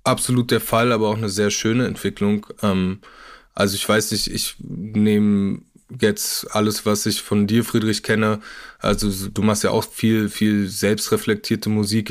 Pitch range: 105-115 Hz